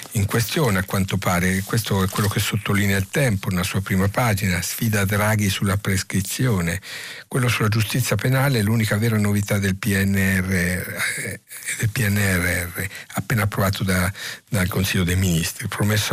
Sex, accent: male, native